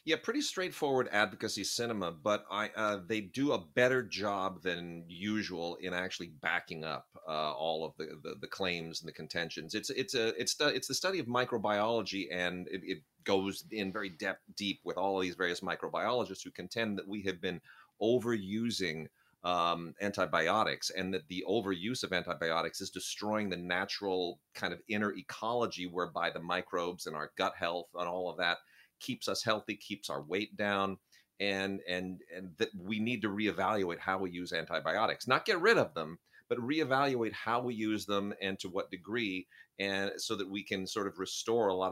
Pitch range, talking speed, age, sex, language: 90-110 Hz, 190 wpm, 30-49, male, English